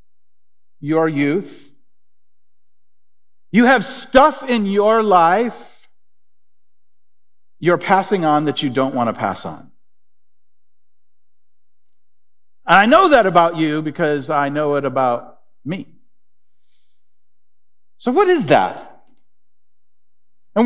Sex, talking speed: male, 100 wpm